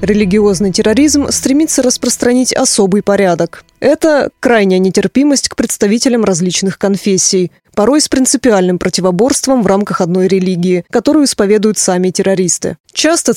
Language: Russian